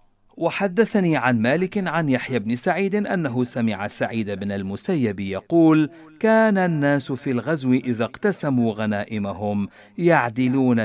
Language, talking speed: Arabic, 115 wpm